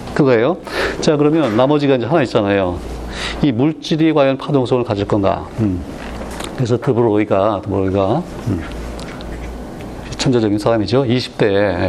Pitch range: 105-140 Hz